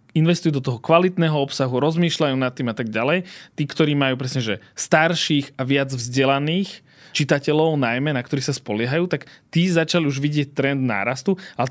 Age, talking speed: 20-39, 175 wpm